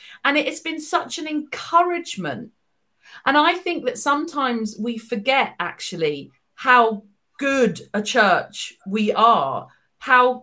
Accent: British